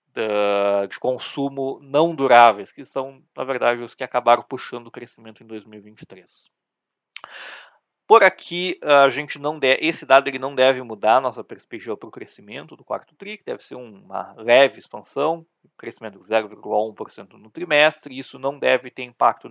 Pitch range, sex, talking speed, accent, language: 115-140 Hz, male, 170 wpm, Brazilian, Portuguese